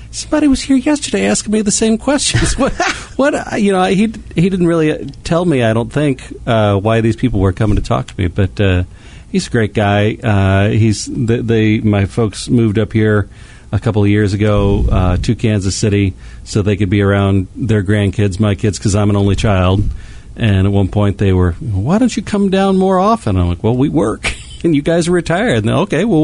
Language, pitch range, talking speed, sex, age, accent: English, 100-120 Hz, 220 wpm, male, 40-59, American